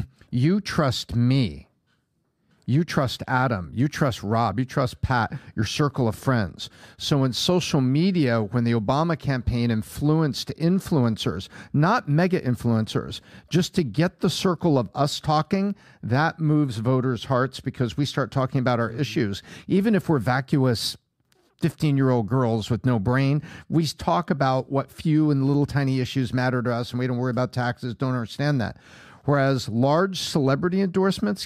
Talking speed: 160 wpm